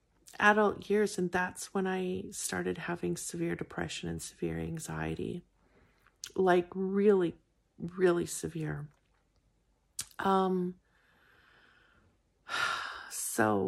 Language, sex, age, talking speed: English, female, 40-59, 85 wpm